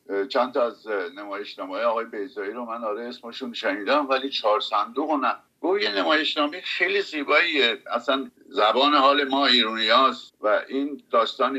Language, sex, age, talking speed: Persian, male, 60-79, 140 wpm